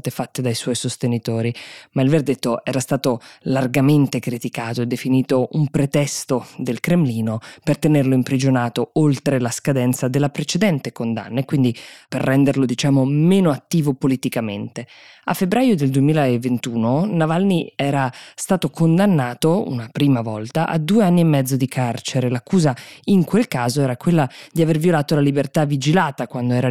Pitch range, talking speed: 125-150 Hz, 150 wpm